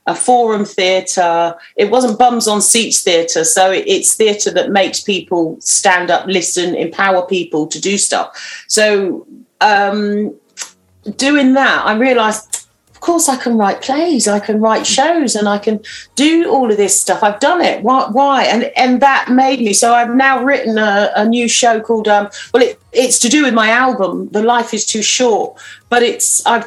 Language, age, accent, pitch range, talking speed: English, 40-59, British, 185-230 Hz, 185 wpm